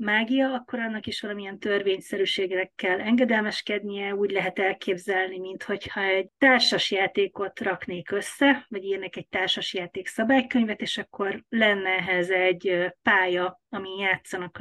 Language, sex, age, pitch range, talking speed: Hungarian, female, 30-49, 190-225 Hz, 115 wpm